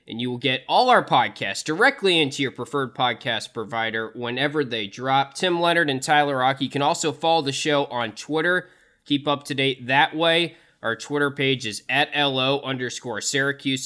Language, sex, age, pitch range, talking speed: English, male, 20-39, 125-155 Hz, 180 wpm